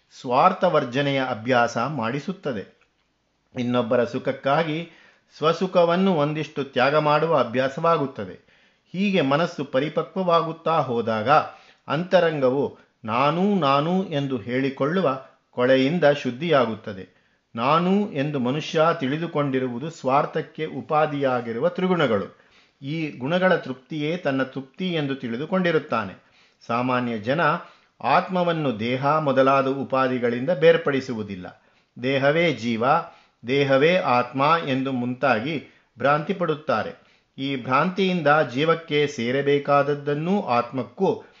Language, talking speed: Kannada, 80 wpm